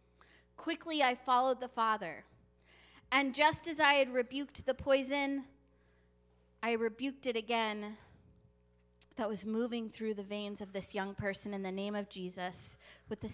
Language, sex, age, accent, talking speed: English, female, 20-39, American, 155 wpm